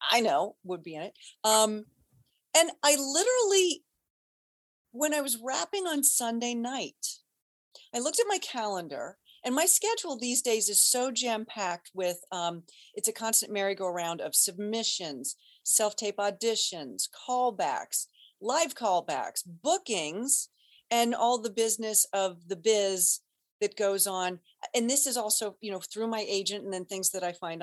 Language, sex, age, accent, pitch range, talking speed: English, female, 40-59, American, 205-280 Hz, 150 wpm